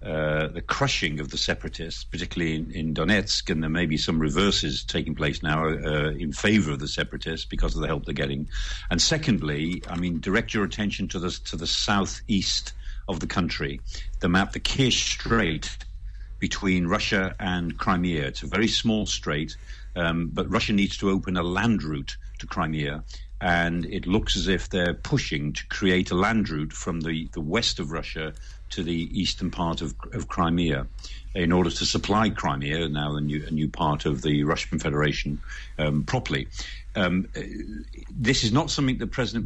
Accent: British